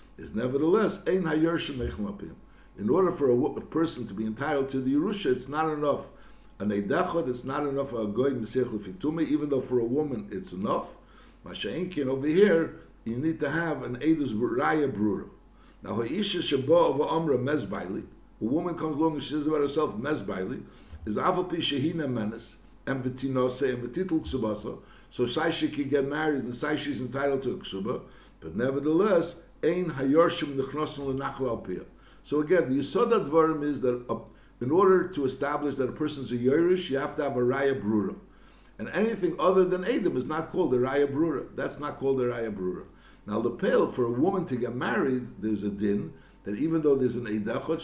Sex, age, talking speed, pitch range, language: male, 60-79, 180 wpm, 125-160 Hz, English